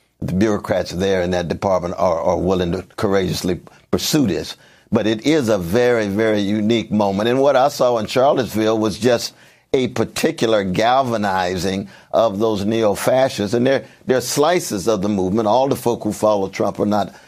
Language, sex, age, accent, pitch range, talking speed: English, male, 60-79, American, 105-140 Hz, 175 wpm